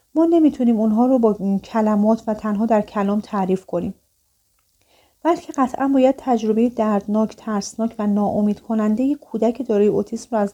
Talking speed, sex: 150 wpm, female